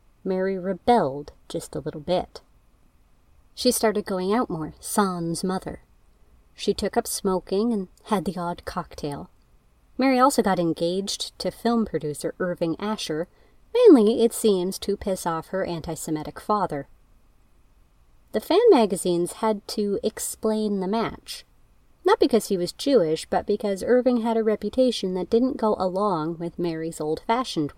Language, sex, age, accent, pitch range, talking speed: English, female, 30-49, American, 155-220 Hz, 145 wpm